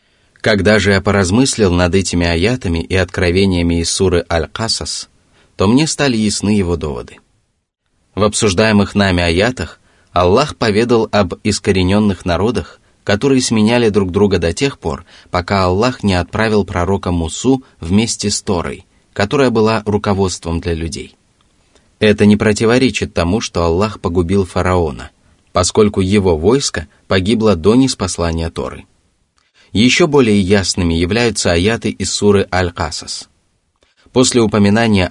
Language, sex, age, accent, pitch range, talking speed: Russian, male, 20-39, native, 85-105 Hz, 125 wpm